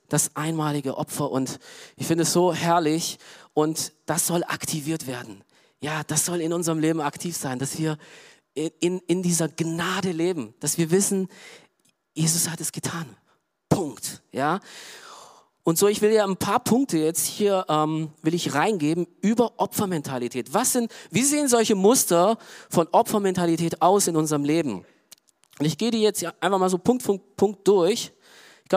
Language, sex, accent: German, male, German